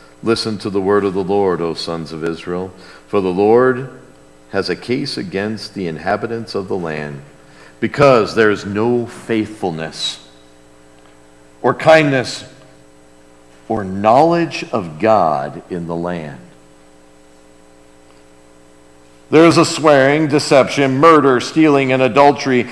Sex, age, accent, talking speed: male, 50-69, American, 120 wpm